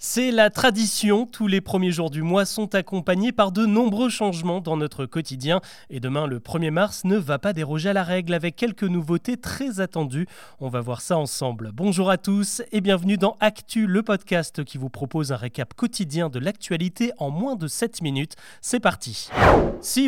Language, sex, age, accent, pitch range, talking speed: French, male, 30-49, French, 155-210 Hz, 195 wpm